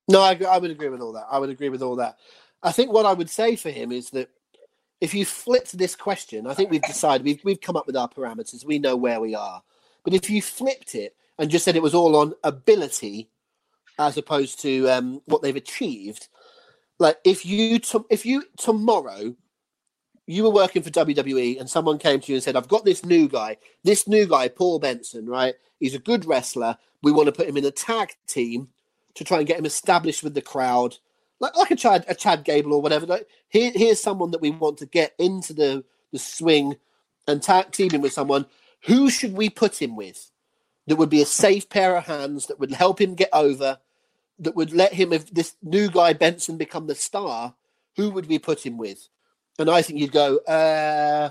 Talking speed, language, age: 220 wpm, English, 30-49